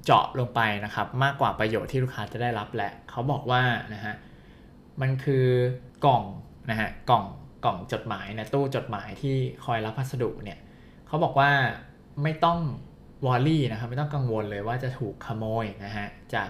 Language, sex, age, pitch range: Thai, male, 20-39, 105-135 Hz